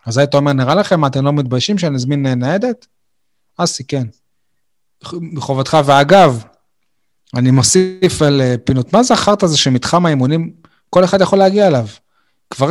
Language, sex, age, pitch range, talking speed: Hebrew, male, 30-49, 135-165 Hz, 145 wpm